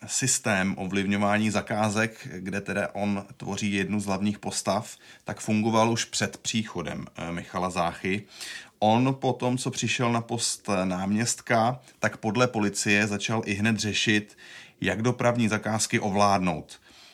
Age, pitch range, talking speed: 30-49, 95-110 Hz, 125 wpm